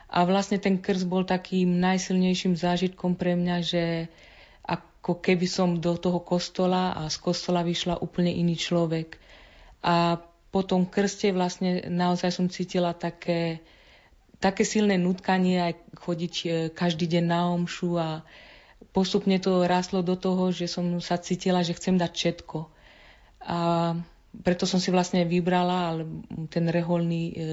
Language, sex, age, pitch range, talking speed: Slovak, female, 40-59, 170-185 Hz, 140 wpm